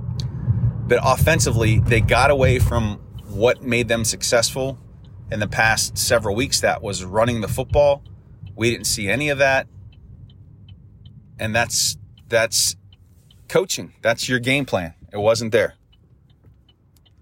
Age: 30-49